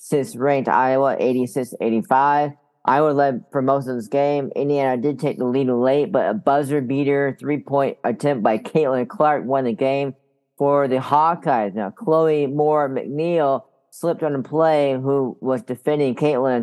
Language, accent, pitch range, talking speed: English, American, 125-145 Hz, 165 wpm